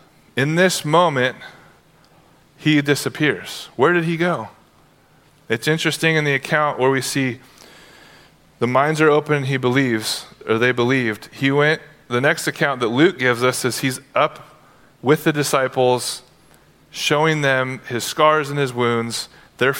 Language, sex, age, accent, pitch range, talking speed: English, male, 30-49, American, 125-160 Hz, 150 wpm